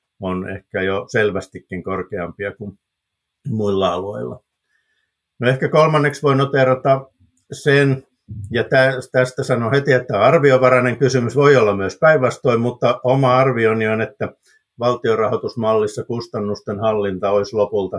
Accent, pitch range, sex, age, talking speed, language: native, 100-130 Hz, male, 50-69, 115 wpm, Finnish